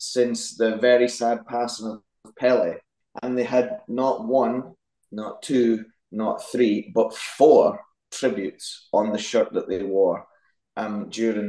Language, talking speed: English, 140 wpm